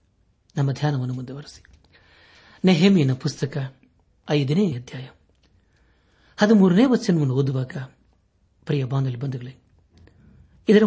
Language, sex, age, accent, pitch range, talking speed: Kannada, male, 60-79, native, 130-170 Hz, 85 wpm